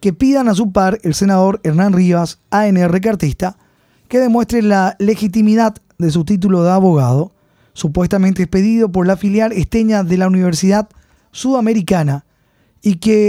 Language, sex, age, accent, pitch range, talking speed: Spanish, male, 20-39, Argentinian, 175-215 Hz, 145 wpm